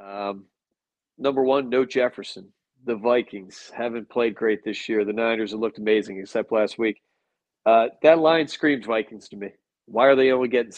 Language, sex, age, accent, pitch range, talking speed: English, male, 40-59, American, 115-135 Hz, 180 wpm